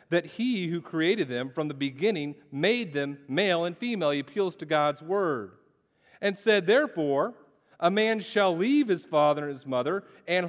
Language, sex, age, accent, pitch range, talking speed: English, male, 40-59, American, 170-220 Hz, 175 wpm